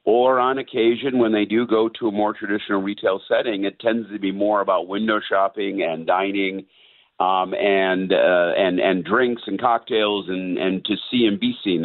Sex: male